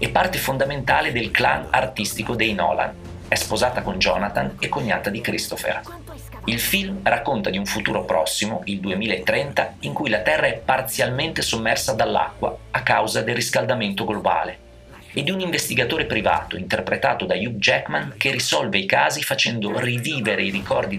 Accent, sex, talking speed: native, male, 155 wpm